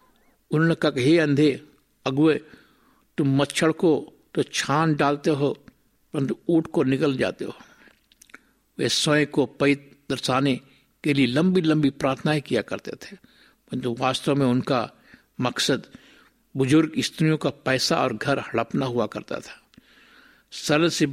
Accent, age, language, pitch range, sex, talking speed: native, 60-79, Hindi, 130-160 Hz, male, 135 wpm